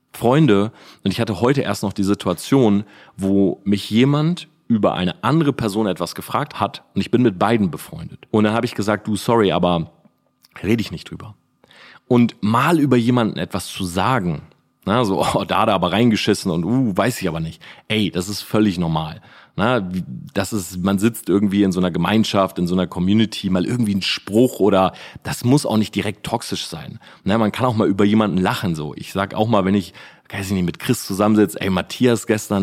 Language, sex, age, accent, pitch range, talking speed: German, male, 30-49, German, 95-115 Hz, 205 wpm